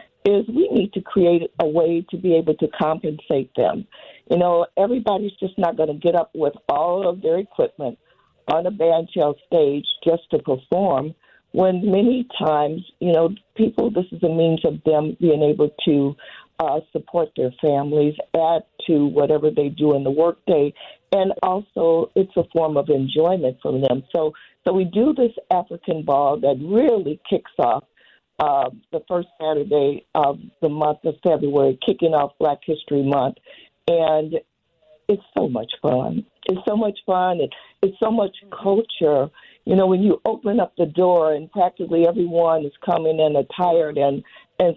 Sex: female